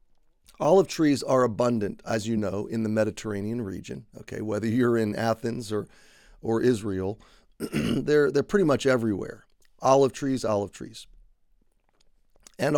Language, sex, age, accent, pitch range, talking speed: English, male, 40-59, American, 110-135 Hz, 135 wpm